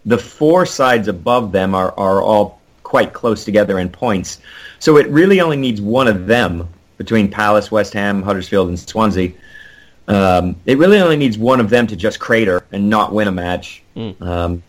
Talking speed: 185 wpm